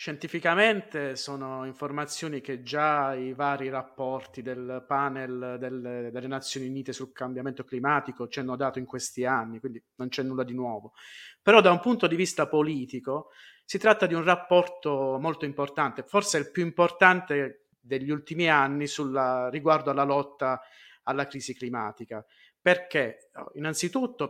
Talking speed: 145 wpm